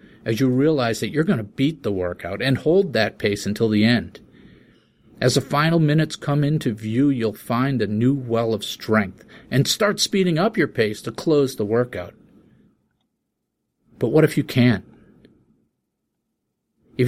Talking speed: 165 wpm